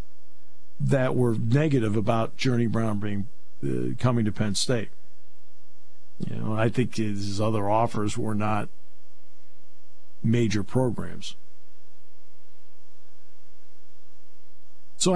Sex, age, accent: male, 50-69, American